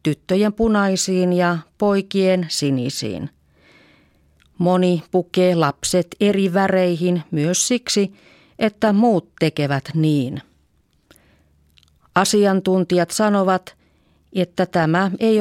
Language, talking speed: Finnish, 80 wpm